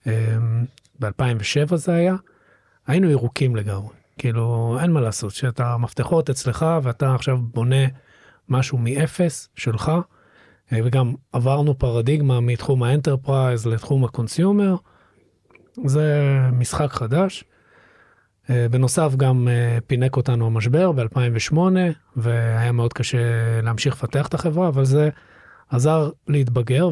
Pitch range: 120-150 Hz